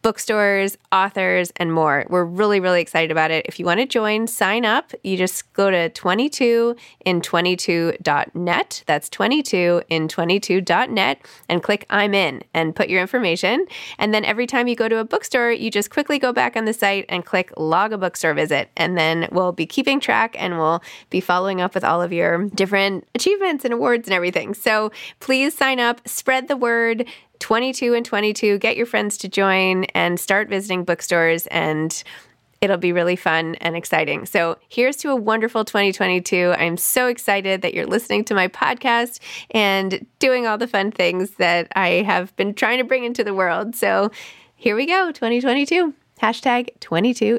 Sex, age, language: female, 20-39, English